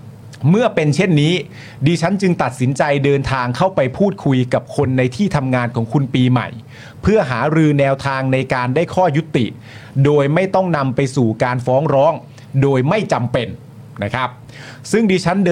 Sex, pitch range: male, 125-155 Hz